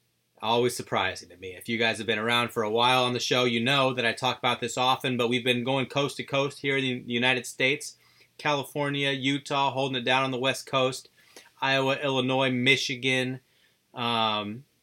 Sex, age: male, 30-49